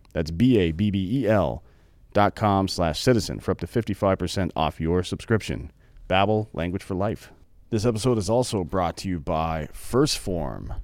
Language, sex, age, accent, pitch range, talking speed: English, male, 40-59, American, 85-110 Hz, 190 wpm